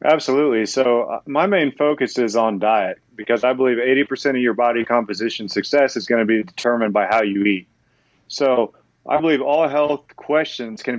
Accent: American